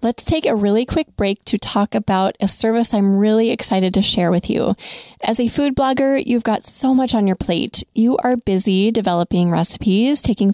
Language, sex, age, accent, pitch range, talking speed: English, female, 30-49, American, 190-230 Hz, 200 wpm